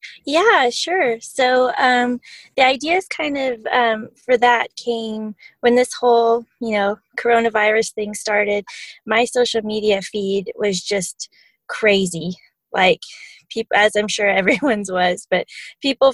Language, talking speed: English, 135 wpm